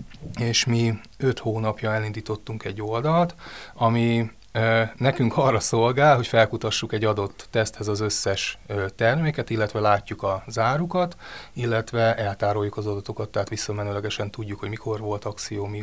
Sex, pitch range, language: male, 105-120 Hz, Hungarian